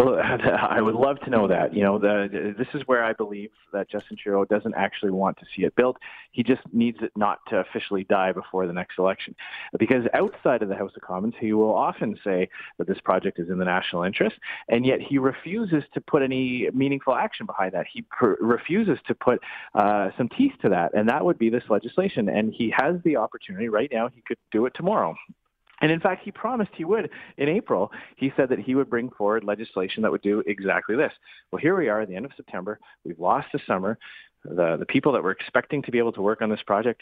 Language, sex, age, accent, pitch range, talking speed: English, male, 30-49, American, 105-140 Hz, 235 wpm